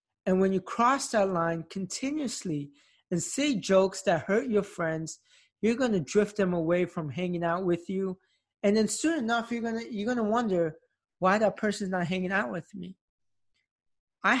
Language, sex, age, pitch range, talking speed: English, male, 20-39, 170-205 Hz, 190 wpm